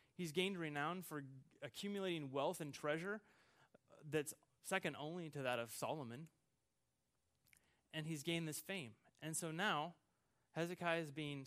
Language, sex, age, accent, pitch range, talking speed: English, male, 30-49, American, 125-165 Hz, 135 wpm